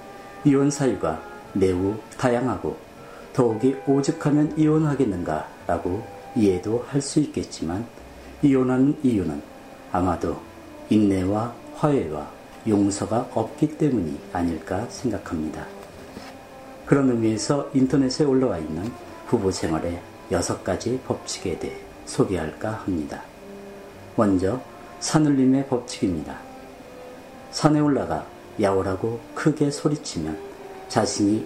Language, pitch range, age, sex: Korean, 95-135 Hz, 40-59, male